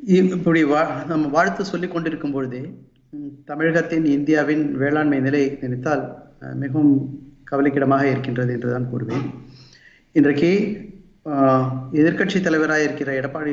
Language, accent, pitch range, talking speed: Tamil, native, 130-160 Hz, 100 wpm